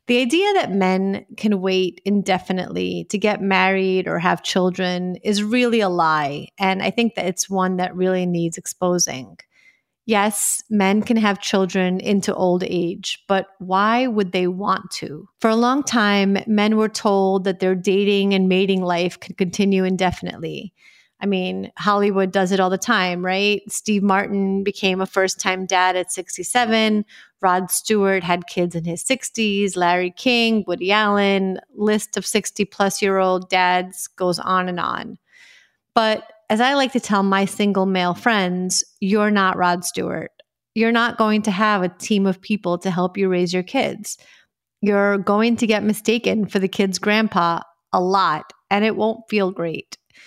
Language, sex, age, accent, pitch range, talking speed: English, female, 30-49, American, 185-210 Hz, 165 wpm